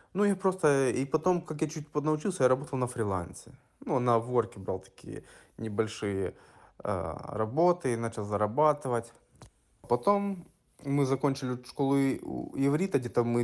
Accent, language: native, Russian